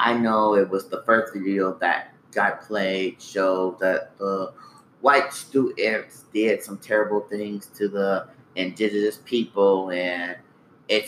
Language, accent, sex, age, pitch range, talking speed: English, American, male, 30-49, 105-140 Hz, 135 wpm